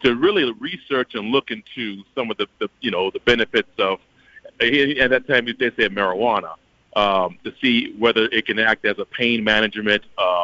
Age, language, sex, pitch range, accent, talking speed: 40-59, English, male, 110-145 Hz, American, 185 wpm